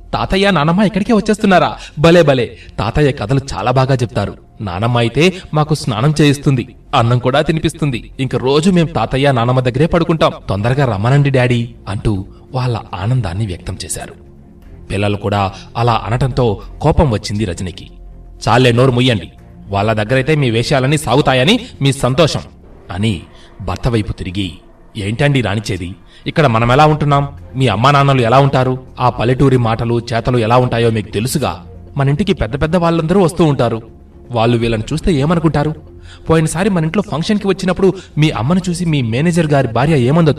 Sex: male